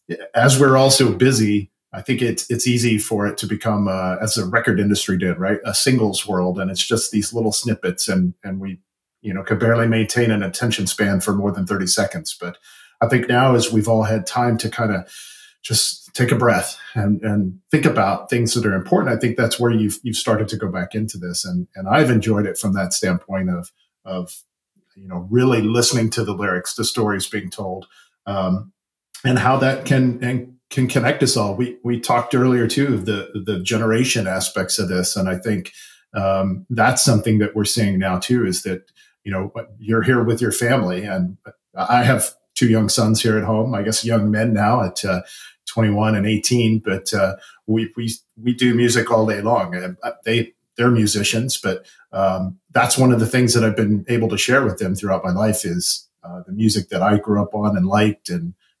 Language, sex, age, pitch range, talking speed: English, male, 40-59, 95-120 Hz, 210 wpm